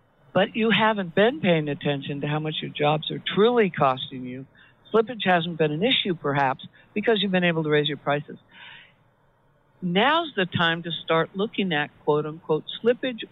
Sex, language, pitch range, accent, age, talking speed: female, English, 155-215 Hz, American, 60-79, 175 wpm